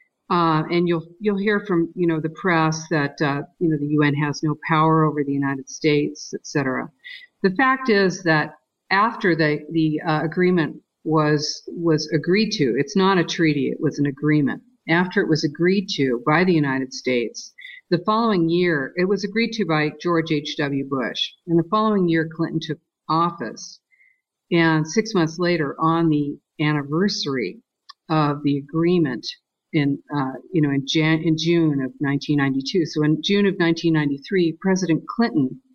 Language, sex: English, female